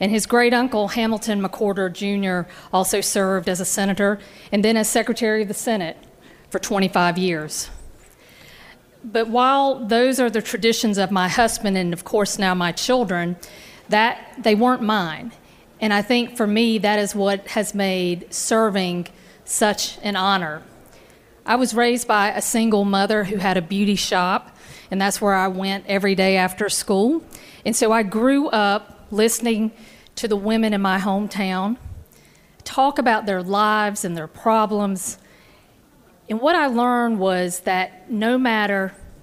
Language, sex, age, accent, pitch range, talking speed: English, female, 40-59, American, 190-230 Hz, 160 wpm